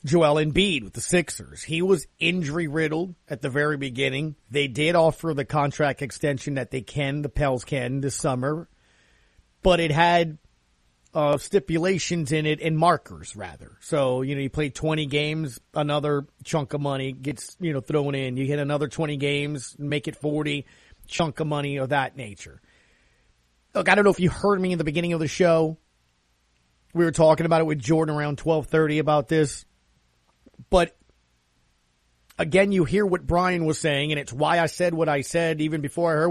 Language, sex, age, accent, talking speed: English, male, 30-49, American, 185 wpm